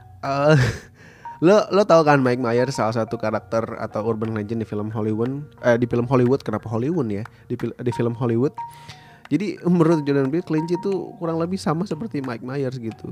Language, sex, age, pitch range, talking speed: Indonesian, male, 20-39, 110-145 Hz, 180 wpm